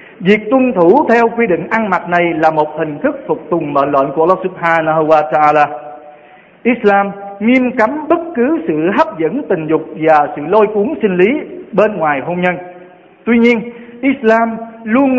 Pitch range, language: 175-240 Hz, Vietnamese